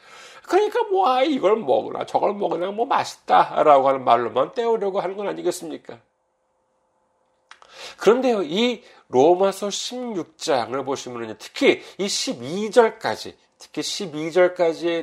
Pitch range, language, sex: 140-225 Hz, Korean, male